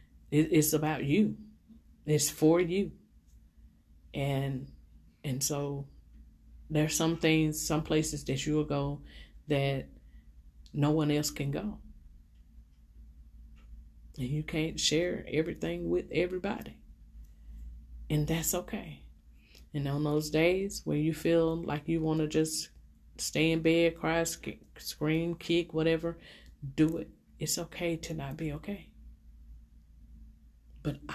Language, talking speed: English, 120 wpm